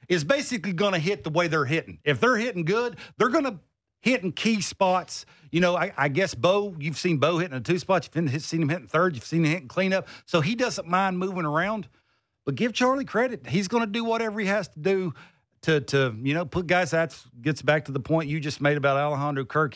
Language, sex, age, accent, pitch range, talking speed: English, male, 50-69, American, 145-185 Hz, 245 wpm